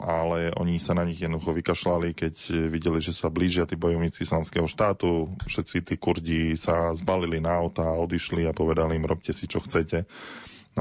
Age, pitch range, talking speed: 20-39, 80-85 Hz, 180 wpm